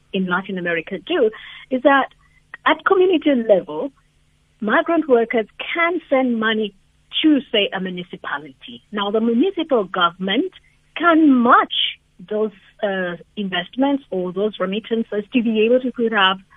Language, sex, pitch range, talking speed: English, female, 180-265 Hz, 125 wpm